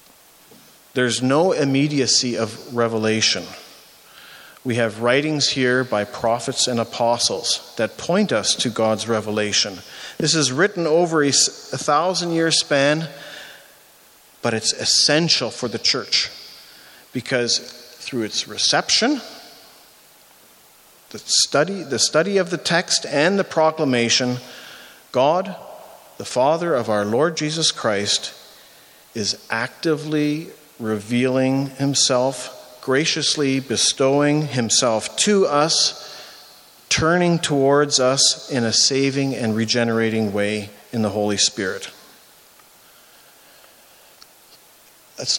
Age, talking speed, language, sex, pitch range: 40-59, 105 wpm, English, male, 115-145 Hz